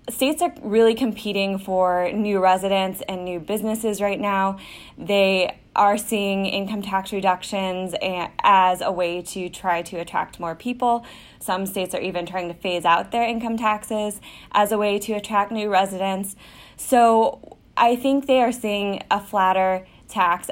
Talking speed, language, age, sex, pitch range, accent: 160 wpm, English, 10-29, female, 185-220 Hz, American